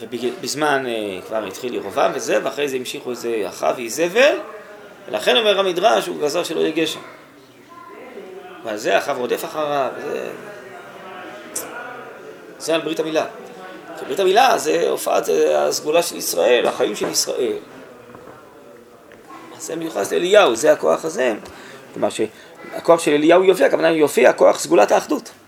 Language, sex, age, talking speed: Hebrew, male, 30-49, 135 wpm